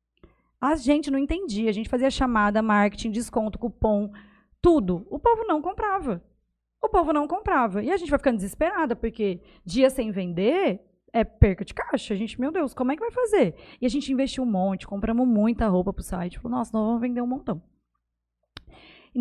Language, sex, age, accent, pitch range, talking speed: Portuguese, female, 20-39, Brazilian, 210-280 Hz, 195 wpm